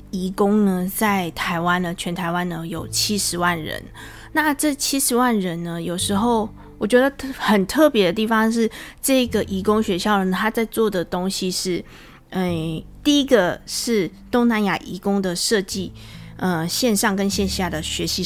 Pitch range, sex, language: 175-220 Hz, female, Chinese